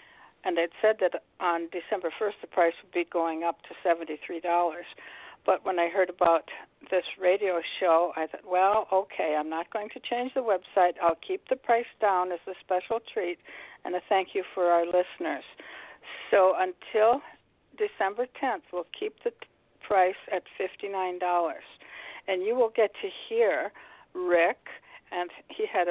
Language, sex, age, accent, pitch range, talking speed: English, female, 60-79, American, 175-230 Hz, 160 wpm